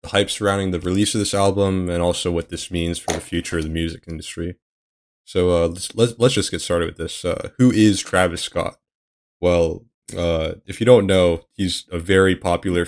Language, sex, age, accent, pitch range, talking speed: English, male, 20-39, American, 85-95 Hz, 210 wpm